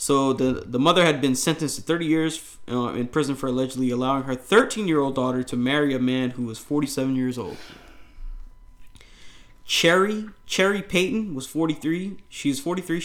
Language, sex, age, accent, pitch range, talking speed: English, male, 20-39, American, 125-150 Hz, 165 wpm